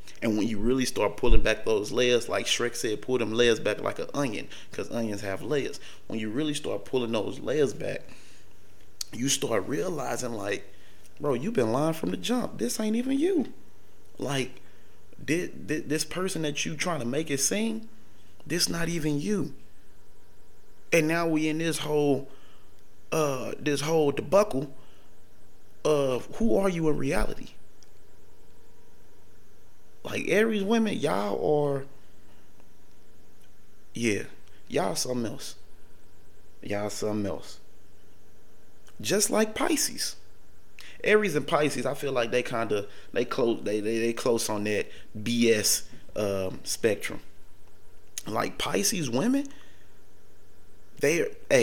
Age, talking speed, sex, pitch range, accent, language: 30-49, 130 wpm, male, 95-150 Hz, American, English